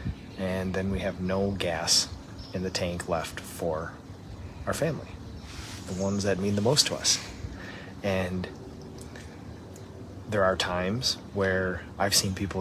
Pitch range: 90-100 Hz